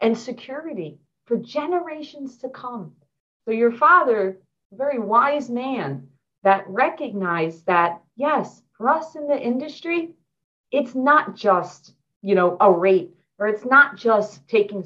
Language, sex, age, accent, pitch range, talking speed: English, female, 40-59, American, 195-300 Hz, 135 wpm